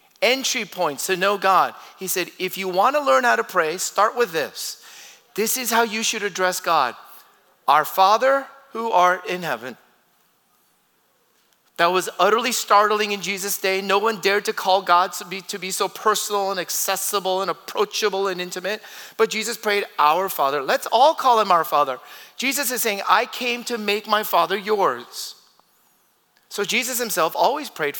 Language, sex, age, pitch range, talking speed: English, male, 40-59, 190-230 Hz, 175 wpm